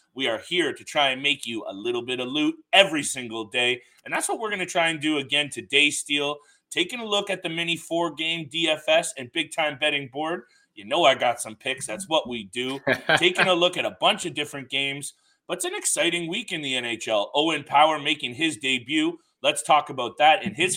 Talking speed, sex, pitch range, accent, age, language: 225 wpm, male, 135-175 Hz, American, 30-49, English